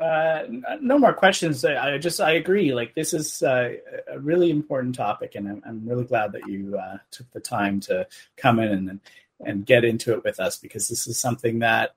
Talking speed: 210 wpm